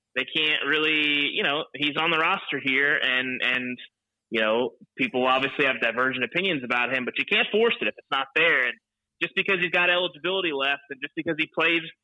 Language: English